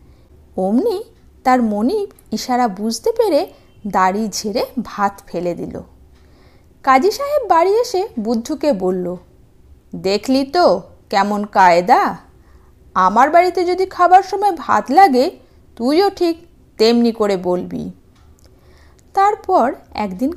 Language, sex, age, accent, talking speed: Bengali, female, 50-69, native, 100 wpm